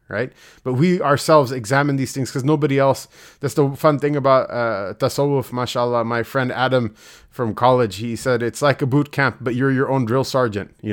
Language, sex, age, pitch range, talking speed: English, male, 30-49, 115-145 Hz, 205 wpm